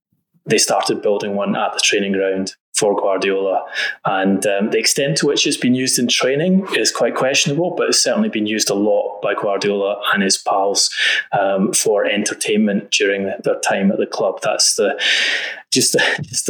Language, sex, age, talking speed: English, male, 20-39, 180 wpm